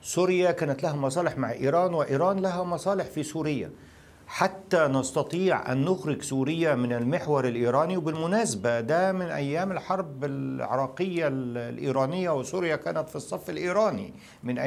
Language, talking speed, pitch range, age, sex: Arabic, 130 wpm, 145-185 Hz, 50-69, male